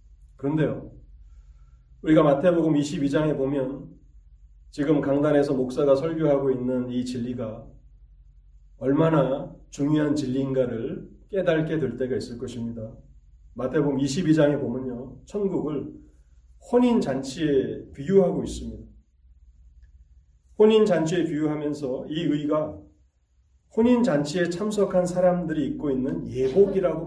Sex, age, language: male, 40-59, Korean